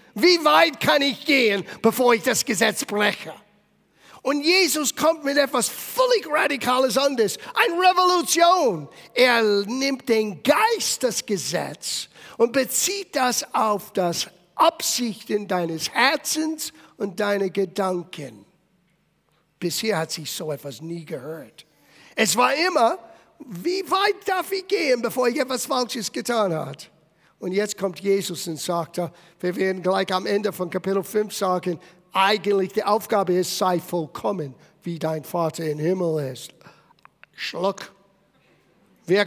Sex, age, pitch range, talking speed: male, 50-69, 185-270 Hz, 135 wpm